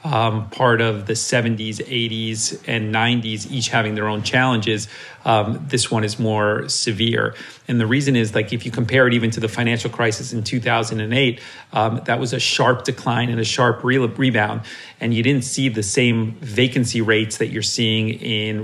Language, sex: English, male